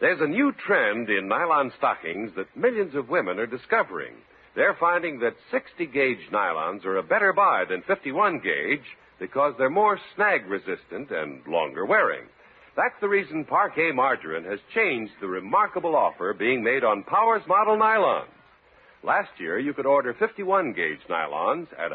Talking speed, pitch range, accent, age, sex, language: 150 wpm, 145-240 Hz, American, 60-79, male, English